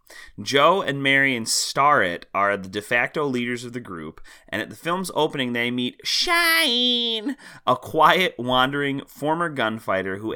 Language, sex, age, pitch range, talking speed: English, male, 30-49, 110-150 Hz, 155 wpm